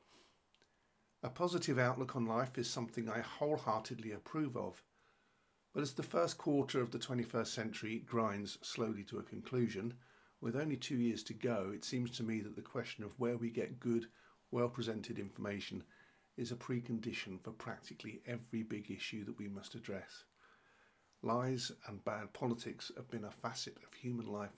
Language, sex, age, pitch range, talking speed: English, male, 50-69, 110-125 Hz, 165 wpm